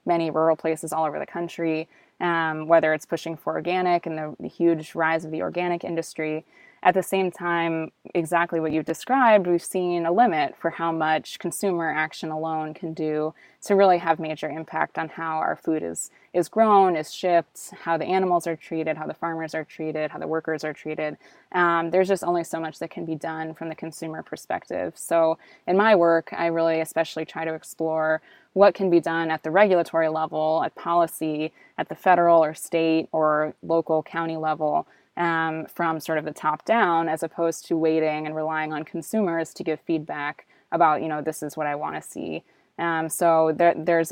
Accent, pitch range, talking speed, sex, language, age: American, 155-170 Hz, 195 wpm, female, English, 20-39